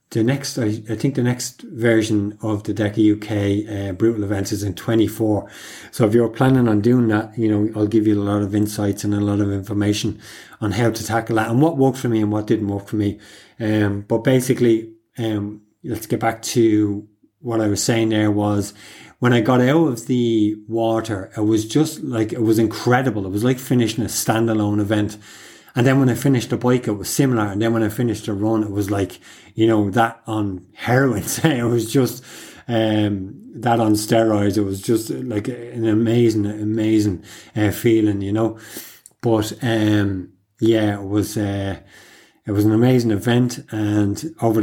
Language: English